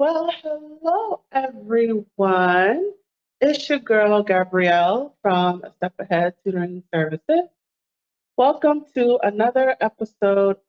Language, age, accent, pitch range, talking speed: English, 30-49, American, 170-240 Hz, 95 wpm